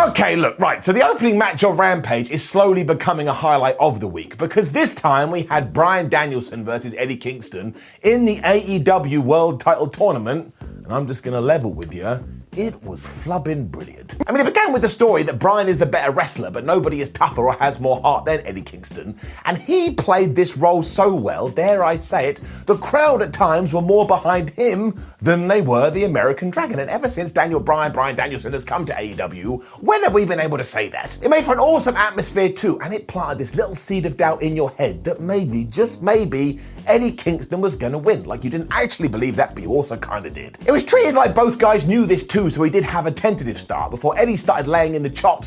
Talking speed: 230 wpm